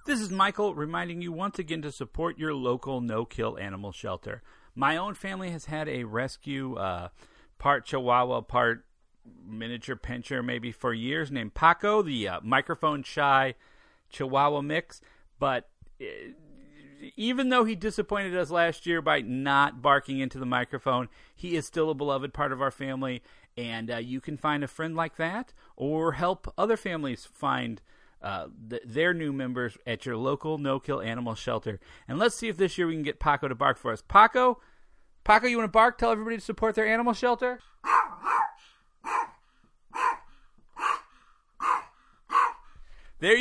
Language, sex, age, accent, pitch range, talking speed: English, male, 40-59, American, 135-210 Hz, 155 wpm